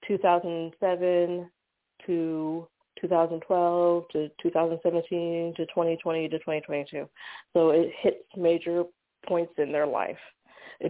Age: 20-39